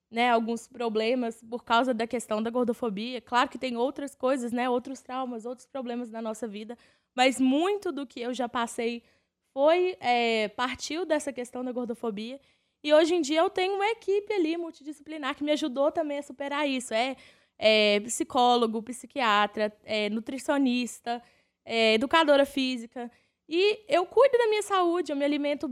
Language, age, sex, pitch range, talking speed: Portuguese, 20-39, female, 245-305 Hz, 155 wpm